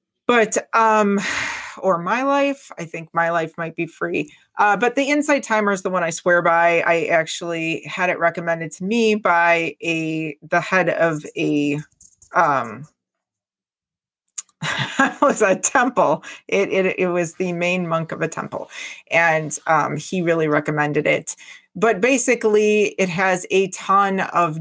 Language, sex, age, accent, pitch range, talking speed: English, female, 30-49, American, 165-200 Hz, 155 wpm